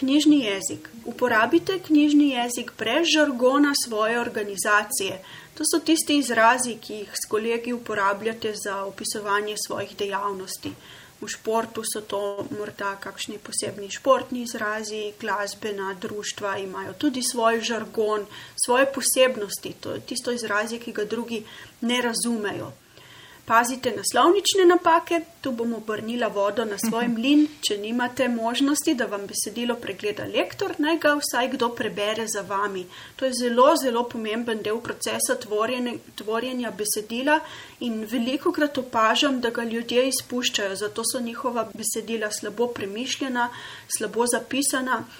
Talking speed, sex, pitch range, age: 130 wpm, female, 215-260 Hz, 30-49